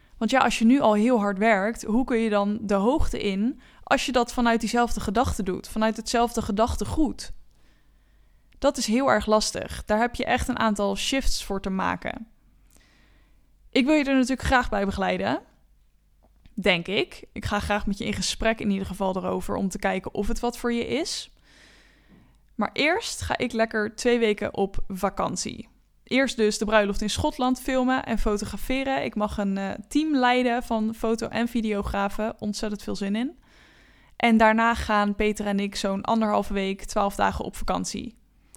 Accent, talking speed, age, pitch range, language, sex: Dutch, 180 wpm, 10-29, 210-245 Hz, English, female